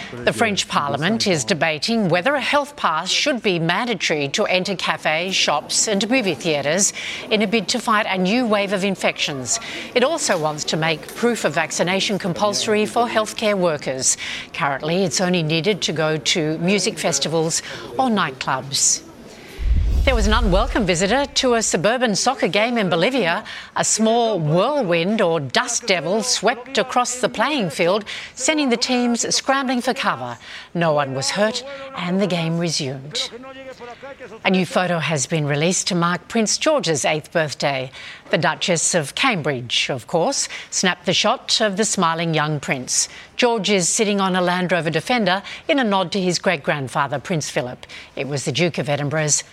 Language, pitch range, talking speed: English, 165-225 Hz, 165 wpm